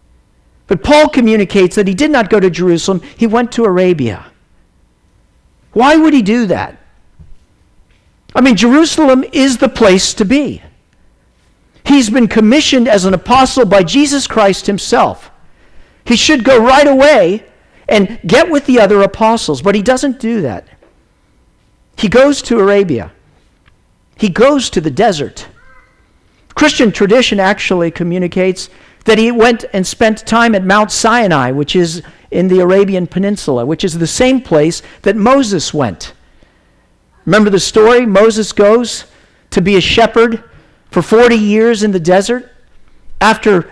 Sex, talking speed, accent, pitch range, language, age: male, 145 wpm, American, 185-245 Hz, English, 50-69